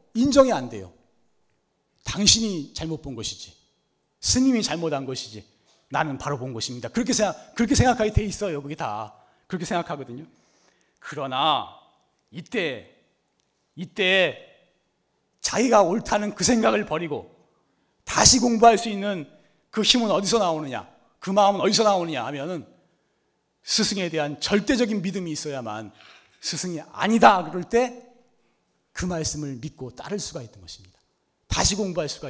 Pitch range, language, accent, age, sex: 120-200 Hz, Korean, native, 40-59, male